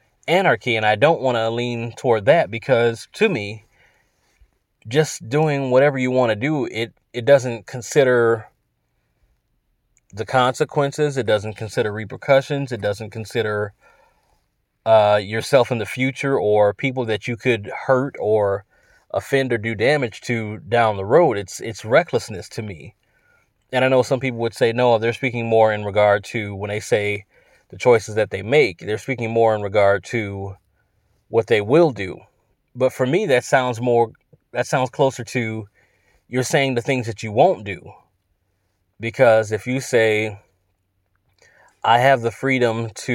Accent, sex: American, male